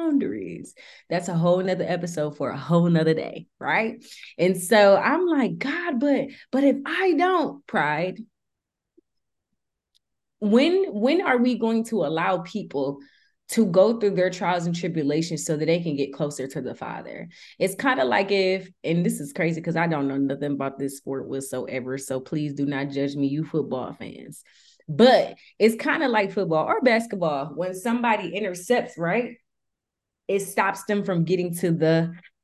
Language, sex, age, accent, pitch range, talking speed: English, female, 20-39, American, 170-245 Hz, 170 wpm